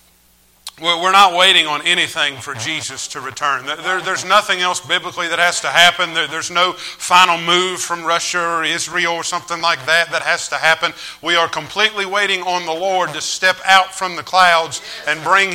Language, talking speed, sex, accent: English, 185 wpm, male, American